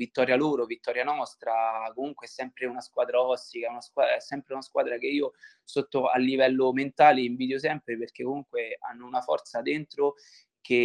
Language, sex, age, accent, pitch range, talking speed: Italian, male, 20-39, native, 120-150 Hz, 160 wpm